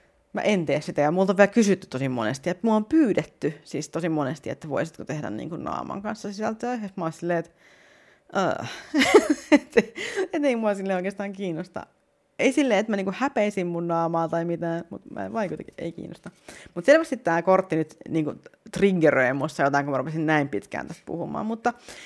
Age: 30-49